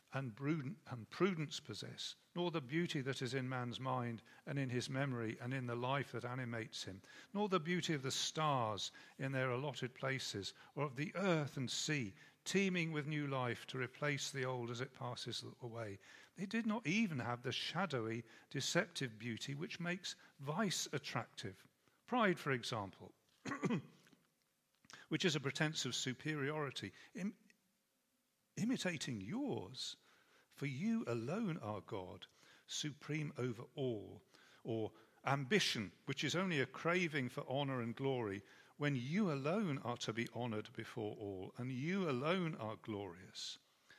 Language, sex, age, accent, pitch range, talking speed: English, male, 50-69, British, 120-160 Hz, 145 wpm